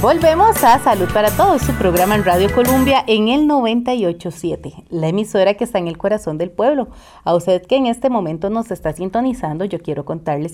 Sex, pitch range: female, 170-240 Hz